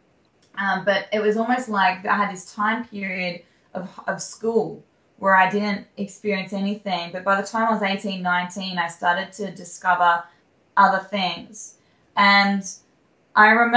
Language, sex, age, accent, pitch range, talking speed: English, female, 20-39, Australian, 185-220 Hz, 150 wpm